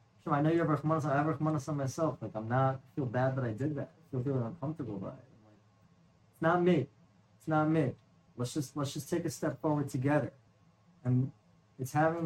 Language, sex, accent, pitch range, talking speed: English, male, American, 125-155 Hz, 205 wpm